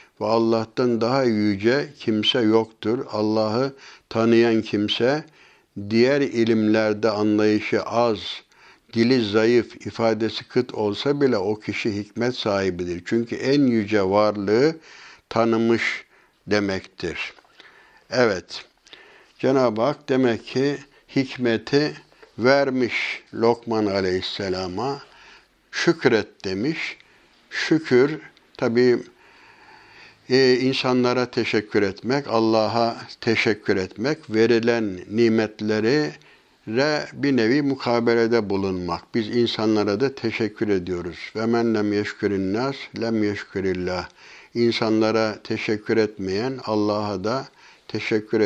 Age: 60-79